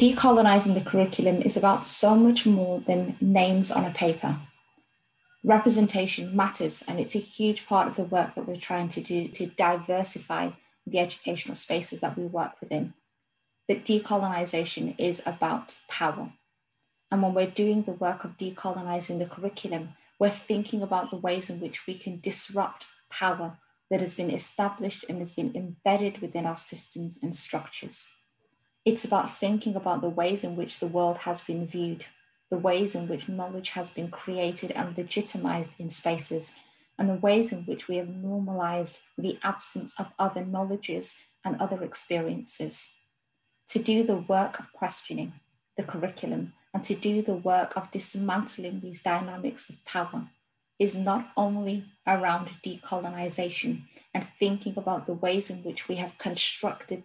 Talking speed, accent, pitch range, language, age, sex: 160 wpm, British, 175-200 Hz, English, 30-49, female